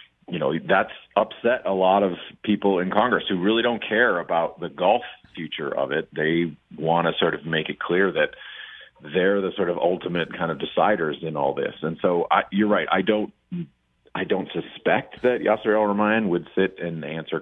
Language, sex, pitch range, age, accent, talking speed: English, male, 85-115 Hz, 40-59, American, 195 wpm